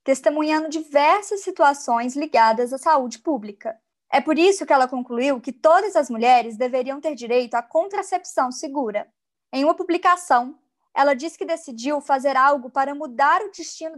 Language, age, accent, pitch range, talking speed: Portuguese, 20-39, Brazilian, 255-320 Hz, 155 wpm